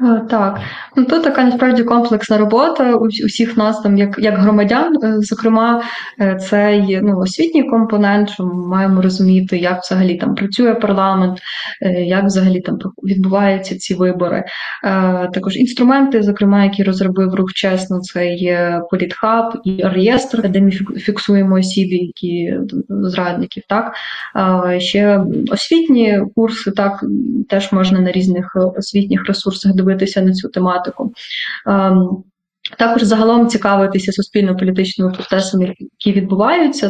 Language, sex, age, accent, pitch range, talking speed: Ukrainian, female, 20-39, native, 190-225 Hz, 125 wpm